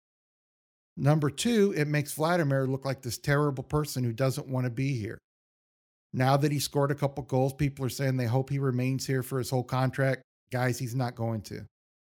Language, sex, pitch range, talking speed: English, male, 120-145 Hz, 200 wpm